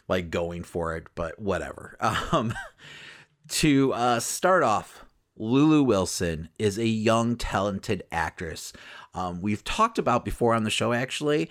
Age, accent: 30-49, American